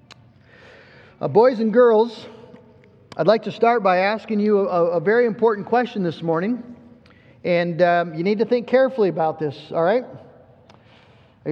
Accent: American